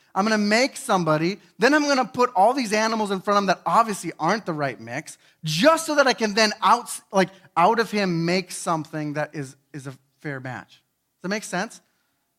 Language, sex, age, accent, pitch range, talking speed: English, male, 30-49, American, 160-215 Hz, 230 wpm